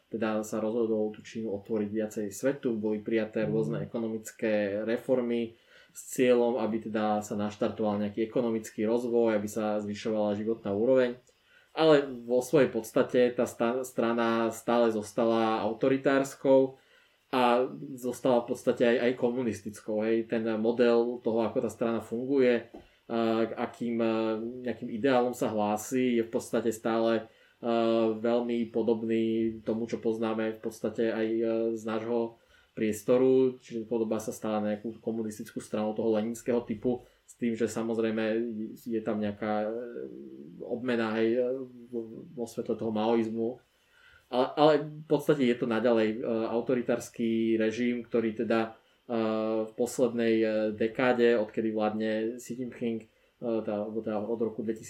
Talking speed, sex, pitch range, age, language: 125 wpm, male, 110-120 Hz, 20-39, Slovak